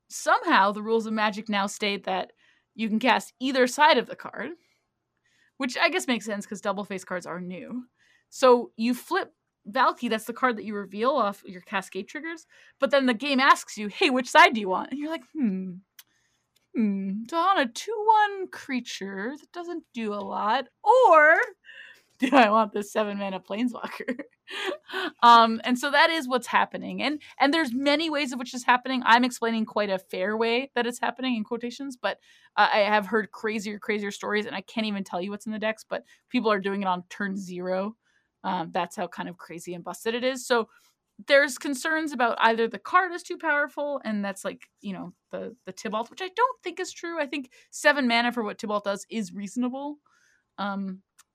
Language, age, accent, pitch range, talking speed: English, 20-39, American, 205-290 Hz, 205 wpm